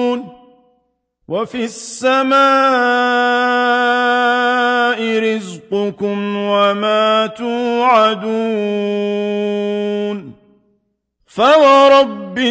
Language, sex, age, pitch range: Arabic, male, 50-69, 210-250 Hz